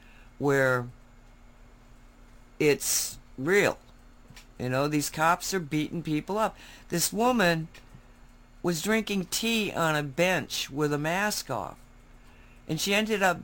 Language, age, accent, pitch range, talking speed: English, 60-79, American, 135-185 Hz, 120 wpm